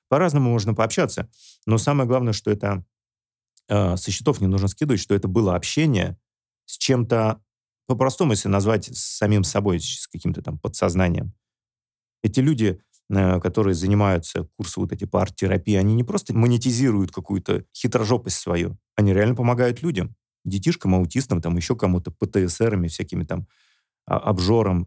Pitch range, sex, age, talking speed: 95-115 Hz, male, 30-49, 145 wpm